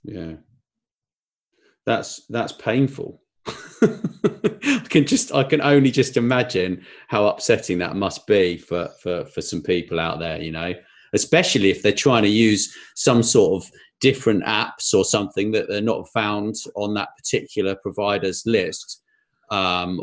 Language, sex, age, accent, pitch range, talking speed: English, male, 30-49, British, 100-155 Hz, 145 wpm